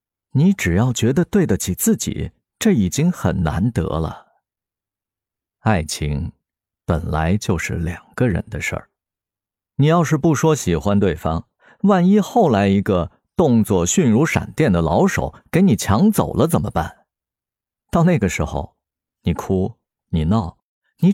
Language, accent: Chinese, native